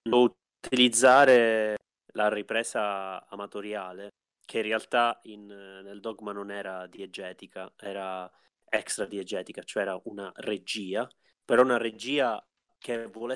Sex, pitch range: male, 100-125 Hz